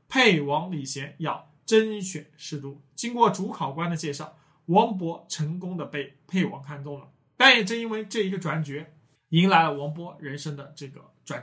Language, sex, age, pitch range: Chinese, male, 20-39, 145-195 Hz